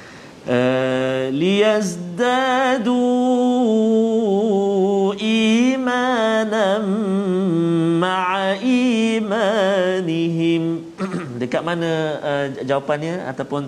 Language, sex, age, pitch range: Malayalam, male, 40-59, 125-190 Hz